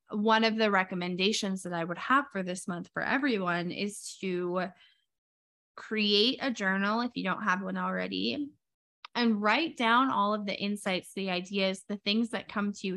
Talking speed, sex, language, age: 180 wpm, female, English, 20-39